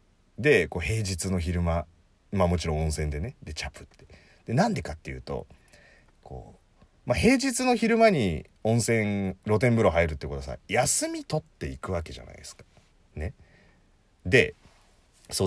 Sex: male